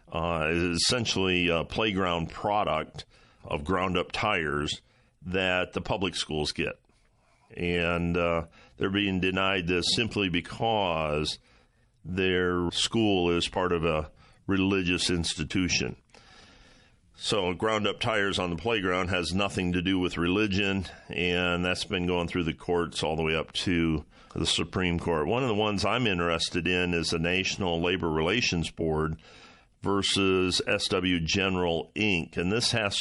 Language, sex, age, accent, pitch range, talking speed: English, male, 50-69, American, 85-100 Hz, 140 wpm